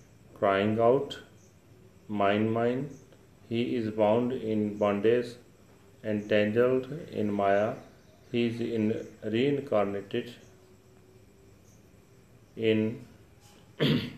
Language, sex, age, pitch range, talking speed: Punjabi, male, 40-59, 105-120 Hz, 70 wpm